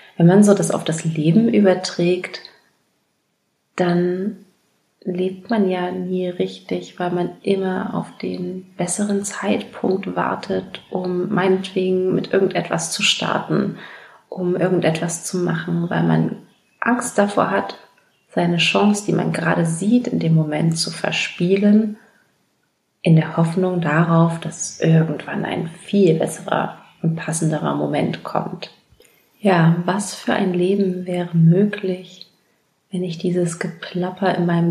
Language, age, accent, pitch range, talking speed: German, 30-49, German, 165-185 Hz, 130 wpm